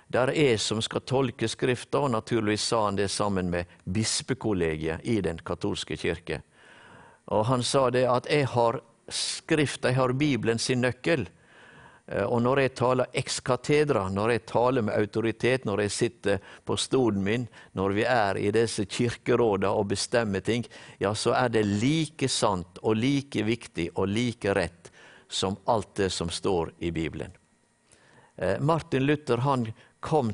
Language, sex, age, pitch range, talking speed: English, male, 60-79, 100-130 Hz, 155 wpm